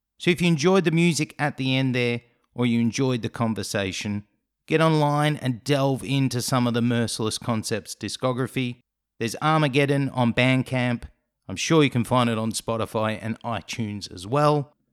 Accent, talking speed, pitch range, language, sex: Australian, 170 wpm, 110-145 Hz, English, male